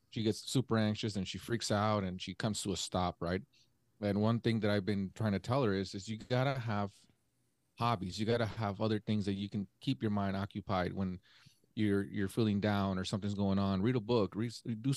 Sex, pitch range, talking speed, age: male, 100-120 Hz, 225 wpm, 30-49